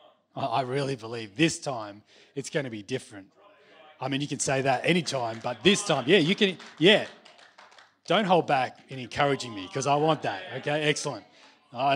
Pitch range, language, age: 130-165 Hz, English, 20-39